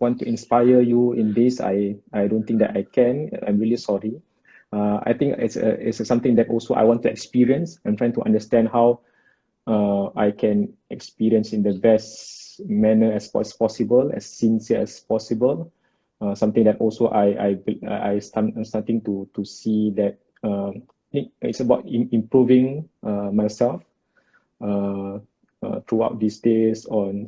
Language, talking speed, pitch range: Malay, 170 wpm, 100-115 Hz